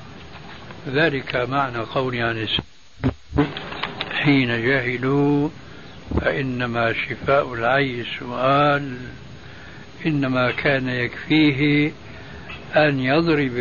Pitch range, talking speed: 130-150 Hz, 70 wpm